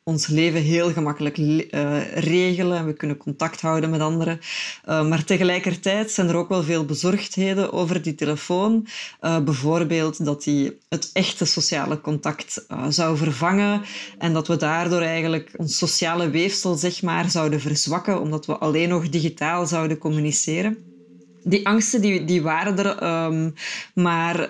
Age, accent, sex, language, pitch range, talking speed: 20-39, Dutch, female, Dutch, 155-190 Hz, 150 wpm